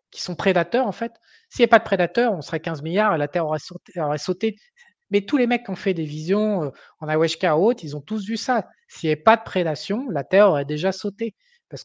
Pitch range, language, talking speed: 160-215 Hz, French, 250 wpm